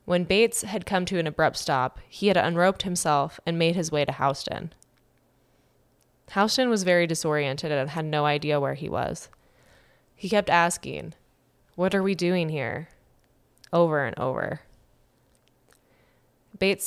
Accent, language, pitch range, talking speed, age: American, English, 145-185 Hz, 145 wpm, 20-39